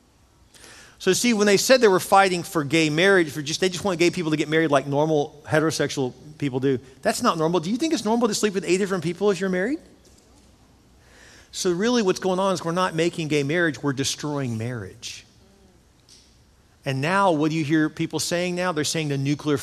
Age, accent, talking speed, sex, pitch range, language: 40-59, American, 215 wpm, male, 130-175 Hz, English